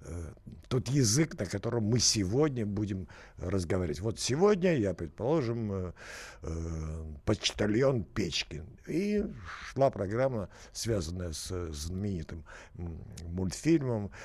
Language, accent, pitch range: Russian, native, 90-120 Hz